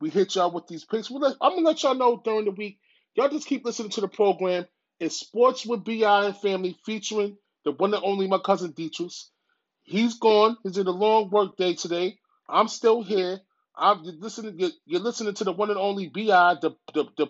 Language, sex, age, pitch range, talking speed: English, male, 30-49, 180-225 Hz, 205 wpm